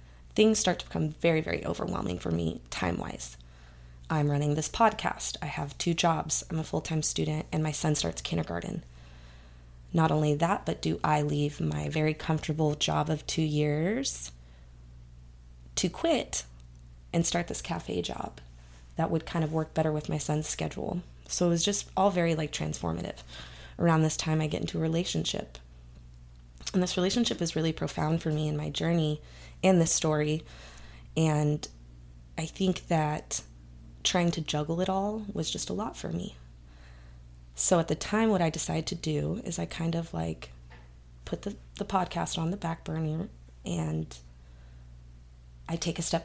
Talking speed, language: 170 wpm, English